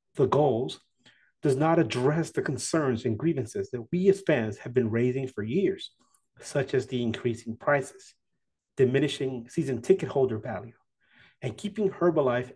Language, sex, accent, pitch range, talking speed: English, male, American, 120-175 Hz, 150 wpm